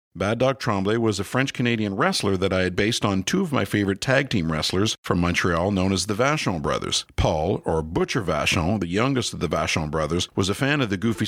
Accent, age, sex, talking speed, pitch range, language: American, 50-69, male, 225 wpm, 90-125 Hz, English